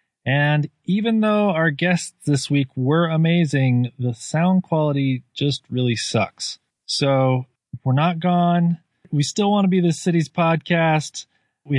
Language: English